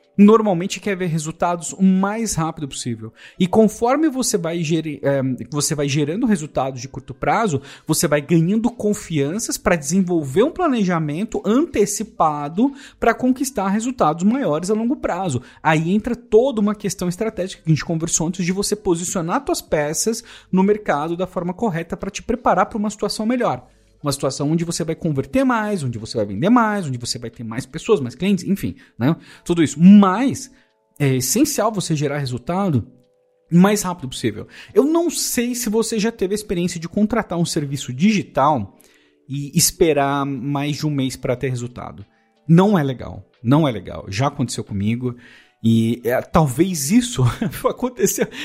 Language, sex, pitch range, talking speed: Portuguese, male, 145-245 Hz, 165 wpm